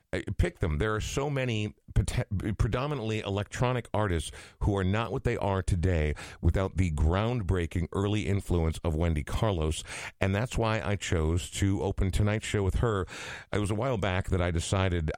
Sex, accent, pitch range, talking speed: male, American, 85-115 Hz, 175 wpm